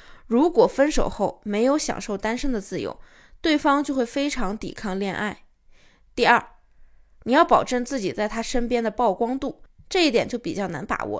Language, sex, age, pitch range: Chinese, female, 20-39, 215-280 Hz